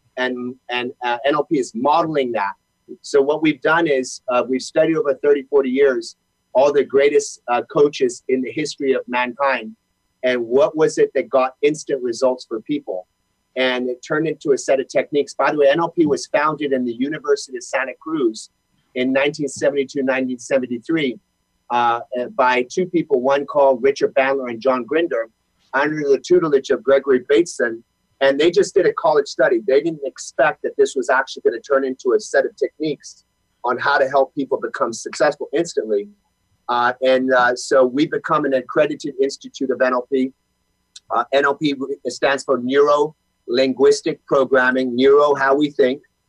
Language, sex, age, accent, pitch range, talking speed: English, male, 30-49, American, 130-180 Hz, 170 wpm